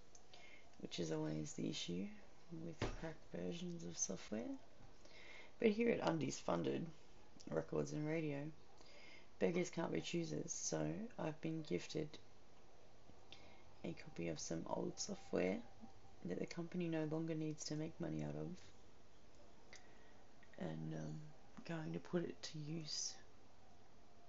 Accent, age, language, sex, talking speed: Australian, 30-49, English, female, 125 wpm